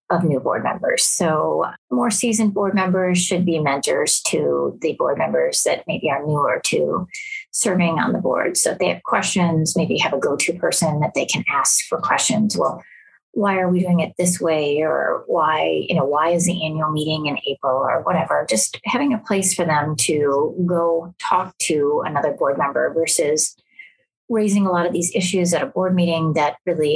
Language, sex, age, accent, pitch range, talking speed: English, female, 30-49, American, 170-255 Hz, 195 wpm